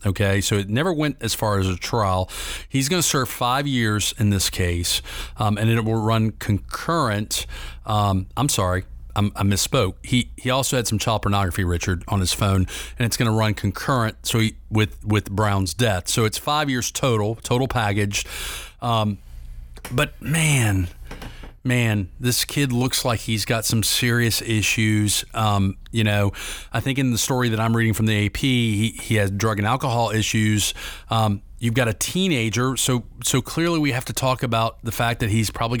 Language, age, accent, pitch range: English, 40-59, American, 100-125 Hz